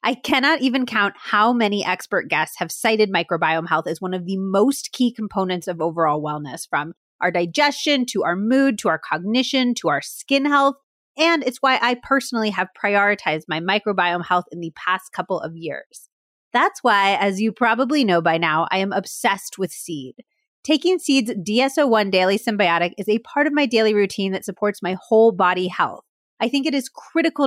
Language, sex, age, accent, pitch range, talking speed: English, female, 30-49, American, 190-260 Hz, 190 wpm